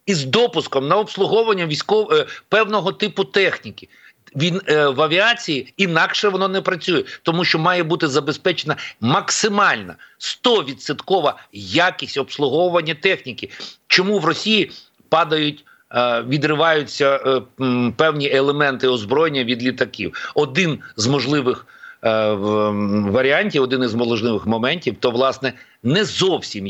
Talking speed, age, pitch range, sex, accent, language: 115 wpm, 50-69, 125-160 Hz, male, native, Ukrainian